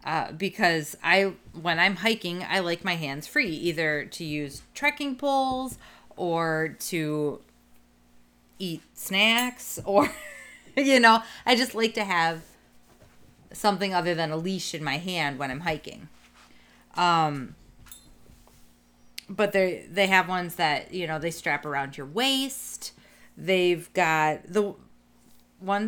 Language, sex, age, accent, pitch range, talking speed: English, female, 30-49, American, 140-190 Hz, 130 wpm